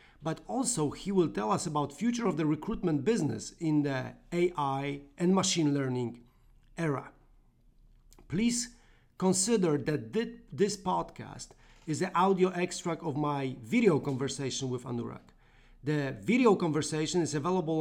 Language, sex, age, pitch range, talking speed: English, male, 40-59, 145-185 Hz, 130 wpm